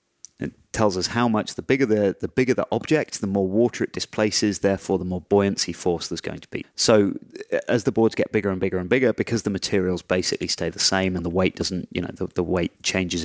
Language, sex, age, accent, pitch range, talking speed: English, male, 30-49, British, 95-110 Hz, 240 wpm